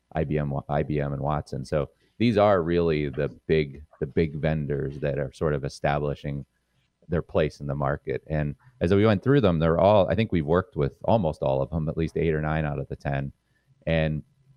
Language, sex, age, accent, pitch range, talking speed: English, male, 30-49, American, 75-85 Hz, 205 wpm